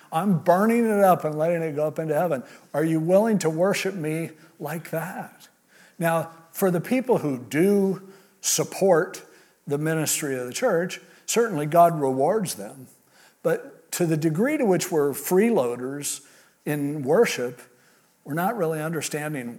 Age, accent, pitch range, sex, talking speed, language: 50-69, American, 140-190 Hz, male, 150 wpm, English